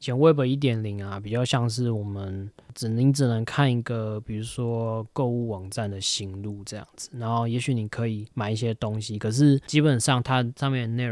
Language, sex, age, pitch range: Chinese, male, 20-39, 105-125 Hz